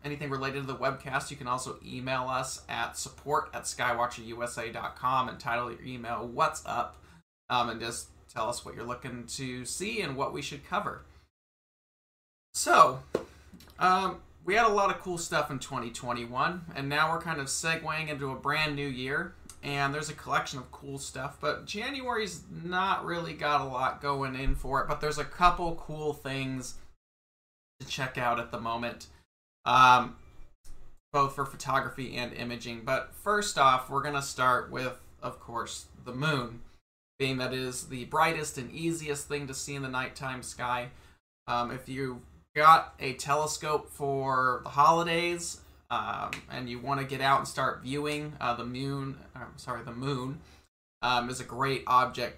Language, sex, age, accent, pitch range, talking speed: English, male, 30-49, American, 120-150 Hz, 170 wpm